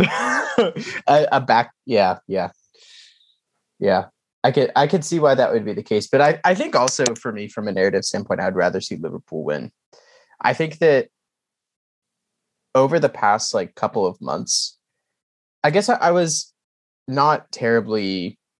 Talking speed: 160 wpm